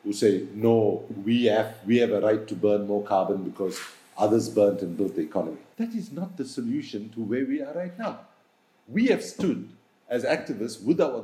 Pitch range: 110-165 Hz